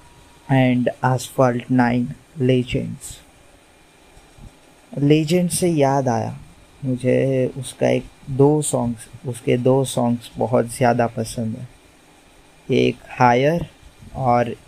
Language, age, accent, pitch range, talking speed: Hindi, 20-39, native, 120-130 Hz, 95 wpm